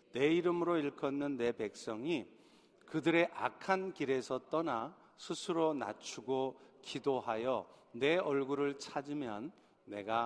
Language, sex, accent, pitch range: Korean, male, native, 120-155 Hz